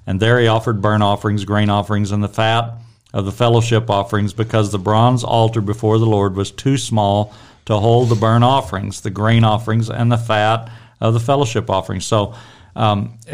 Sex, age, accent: male, 50-69, American